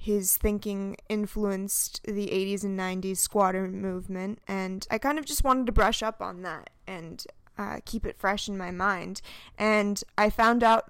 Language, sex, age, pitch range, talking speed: English, female, 20-39, 195-220 Hz, 175 wpm